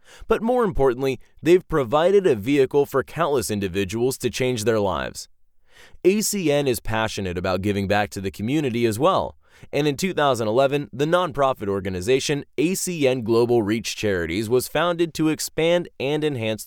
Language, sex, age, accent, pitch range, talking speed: English, male, 20-39, American, 110-165 Hz, 150 wpm